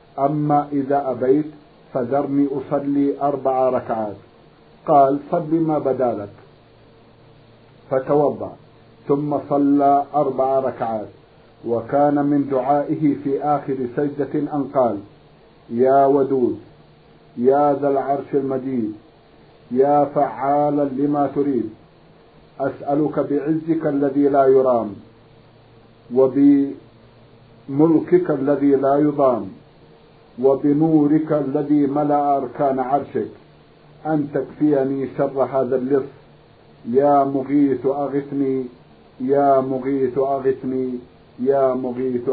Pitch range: 130-145 Hz